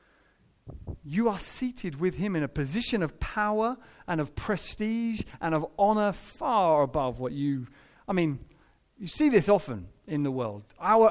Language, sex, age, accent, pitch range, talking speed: English, male, 30-49, British, 135-205 Hz, 160 wpm